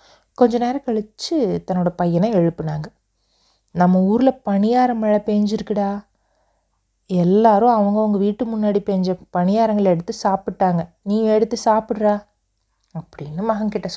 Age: 30-49